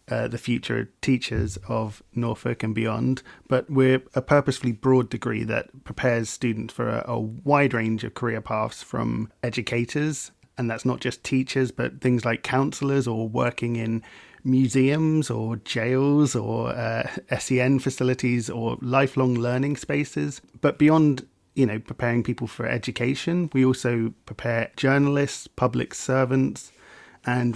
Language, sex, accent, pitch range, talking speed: English, male, British, 115-130 Hz, 140 wpm